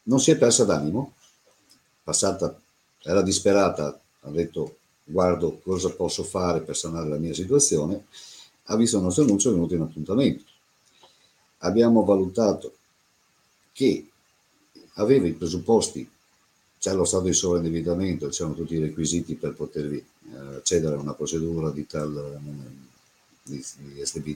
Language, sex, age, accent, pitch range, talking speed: Italian, male, 50-69, native, 80-110 Hz, 130 wpm